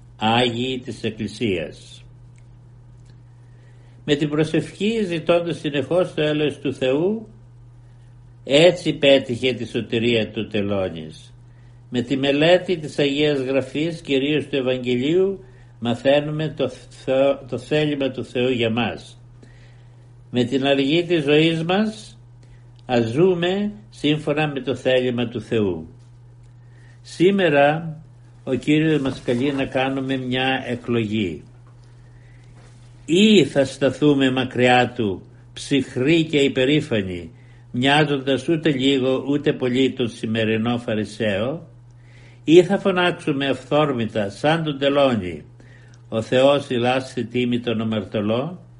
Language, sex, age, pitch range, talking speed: Greek, male, 60-79, 120-145 Hz, 105 wpm